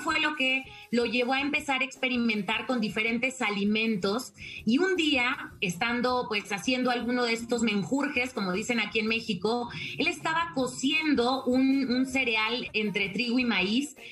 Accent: Mexican